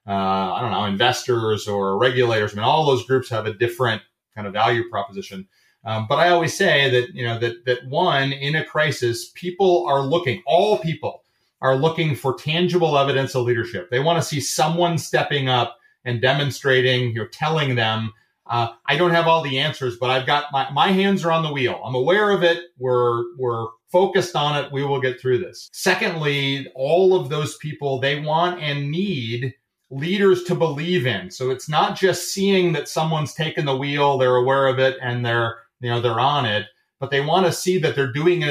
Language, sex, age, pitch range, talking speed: English, male, 30-49, 125-175 Hz, 205 wpm